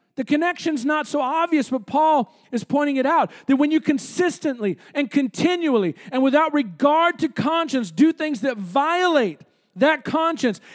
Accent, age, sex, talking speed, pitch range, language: American, 40-59, male, 155 wpm, 230-305 Hz, English